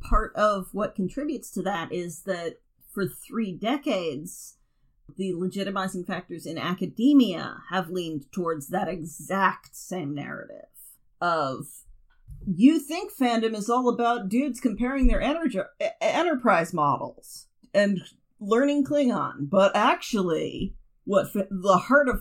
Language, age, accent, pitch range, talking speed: English, 40-59, American, 185-255 Hz, 120 wpm